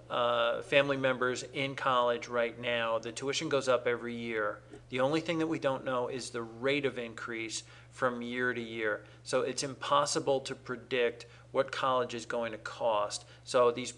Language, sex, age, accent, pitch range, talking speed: English, male, 40-59, American, 120-135 Hz, 180 wpm